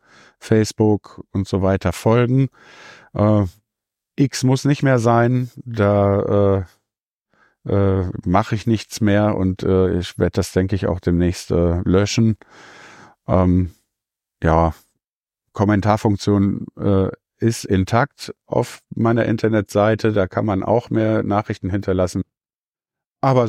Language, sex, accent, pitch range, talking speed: German, male, German, 90-115 Hz, 120 wpm